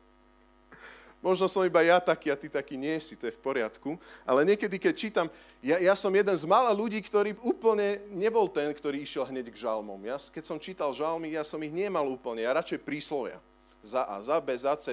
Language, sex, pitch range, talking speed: Slovak, male, 140-205 Hz, 215 wpm